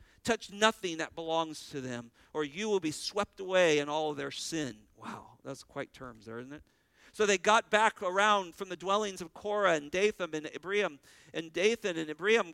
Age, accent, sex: 50-69, American, male